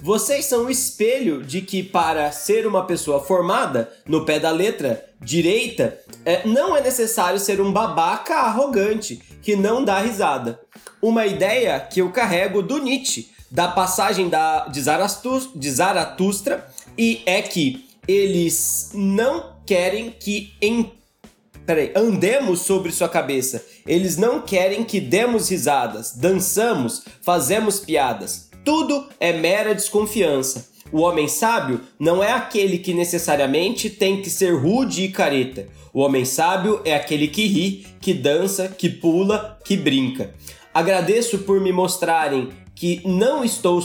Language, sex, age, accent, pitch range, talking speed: Portuguese, male, 20-39, Brazilian, 165-215 Hz, 135 wpm